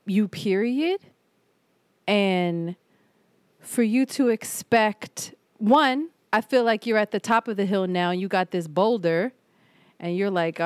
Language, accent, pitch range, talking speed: English, American, 170-225 Hz, 145 wpm